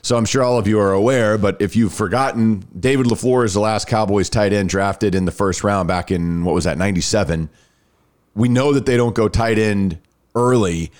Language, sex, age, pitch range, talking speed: English, male, 40-59, 95-130 Hz, 220 wpm